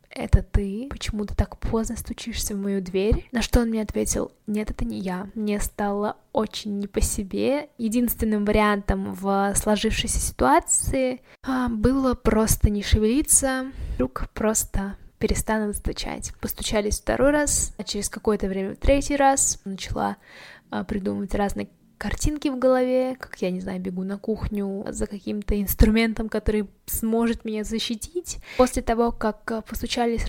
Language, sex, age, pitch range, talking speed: Russian, female, 10-29, 200-235 Hz, 145 wpm